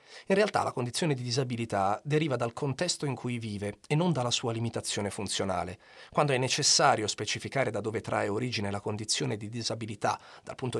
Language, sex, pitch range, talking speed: Italian, male, 115-155 Hz, 180 wpm